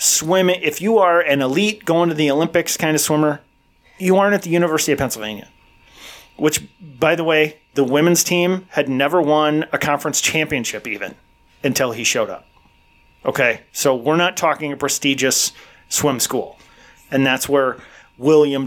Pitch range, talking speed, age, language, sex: 130-160 Hz, 165 wpm, 30-49, English, male